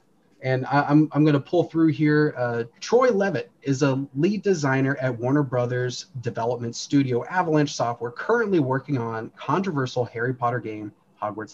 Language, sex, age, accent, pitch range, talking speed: English, male, 30-49, American, 120-150 Hz, 155 wpm